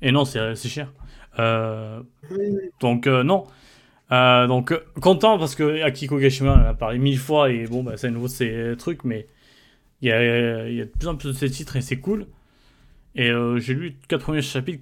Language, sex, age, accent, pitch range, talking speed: French, male, 20-39, French, 125-145 Hz, 210 wpm